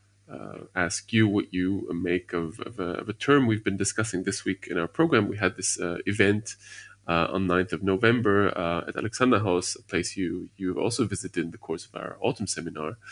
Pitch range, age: 90-110 Hz, 20-39